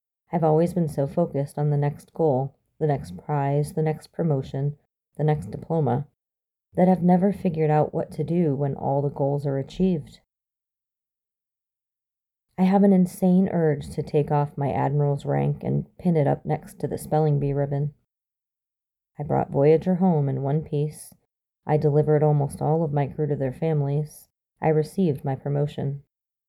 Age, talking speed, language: 30-49, 170 wpm, English